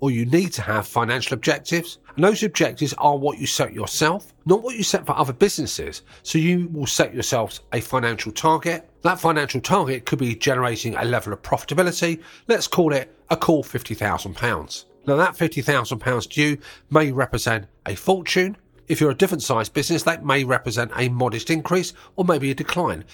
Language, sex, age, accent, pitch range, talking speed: English, male, 40-59, British, 120-165 Hz, 185 wpm